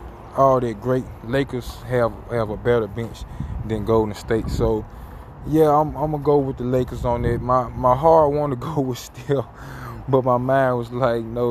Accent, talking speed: American, 195 wpm